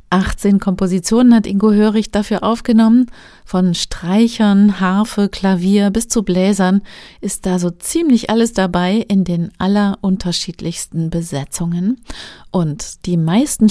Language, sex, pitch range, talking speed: German, female, 175-215 Hz, 120 wpm